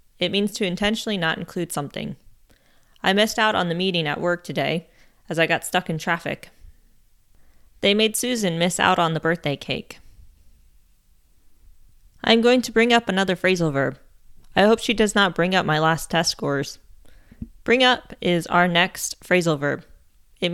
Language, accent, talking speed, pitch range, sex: English, American, 170 wpm, 145-205 Hz, female